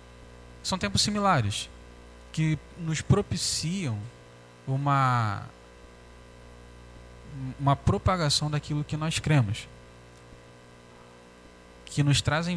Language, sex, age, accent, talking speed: Portuguese, male, 10-29, Brazilian, 75 wpm